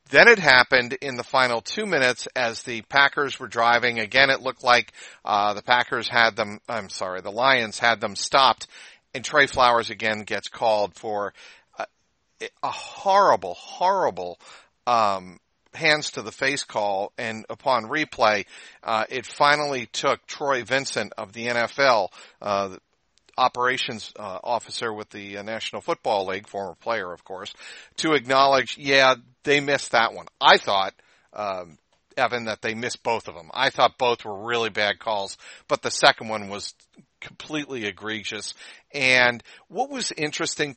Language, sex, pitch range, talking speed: English, male, 110-140 Hz, 155 wpm